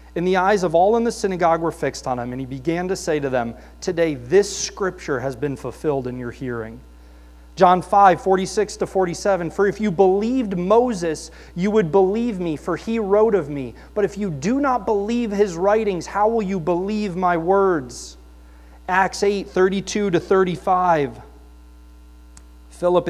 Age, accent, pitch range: 30-49, American, 160-210 Hz